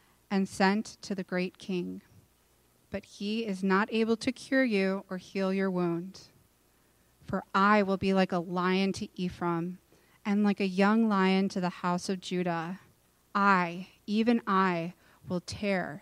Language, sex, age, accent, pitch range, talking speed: English, female, 30-49, American, 175-200 Hz, 155 wpm